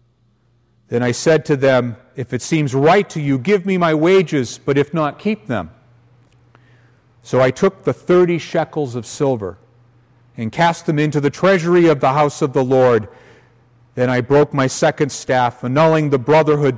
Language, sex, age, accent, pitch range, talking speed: English, male, 50-69, American, 120-145 Hz, 175 wpm